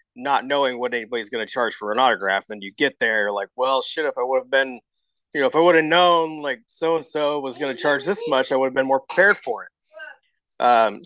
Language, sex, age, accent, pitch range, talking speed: English, male, 30-49, American, 130-220 Hz, 250 wpm